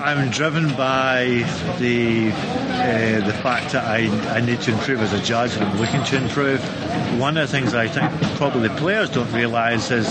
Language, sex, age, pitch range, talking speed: English, male, 50-69, 110-135 Hz, 195 wpm